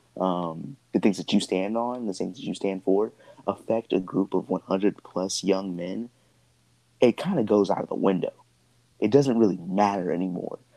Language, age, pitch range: English, 20-39, 95-115 Hz